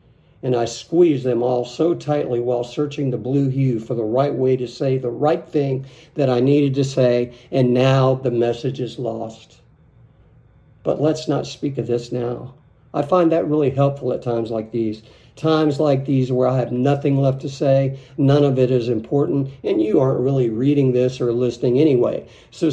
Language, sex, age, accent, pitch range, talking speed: English, male, 50-69, American, 125-155 Hz, 195 wpm